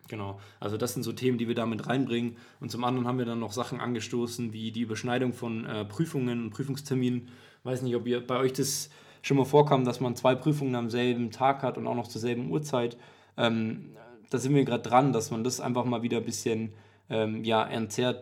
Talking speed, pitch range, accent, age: 230 wpm, 115-130 Hz, German, 20-39